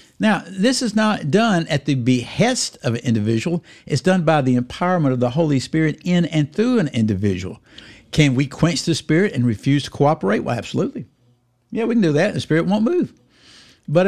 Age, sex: 60-79, male